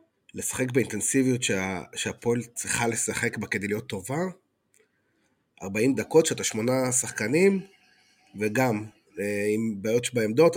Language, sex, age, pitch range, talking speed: Hebrew, male, 30-49, 105-130 Hz, 110 wpm